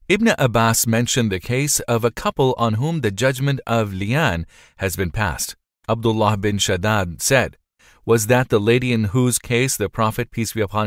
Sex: male